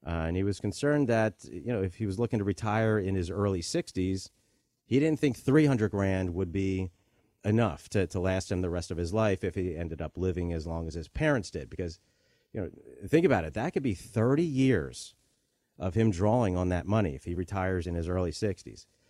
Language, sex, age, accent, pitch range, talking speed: English, male, 40-59, American, 90-120 Hz, 220 wpm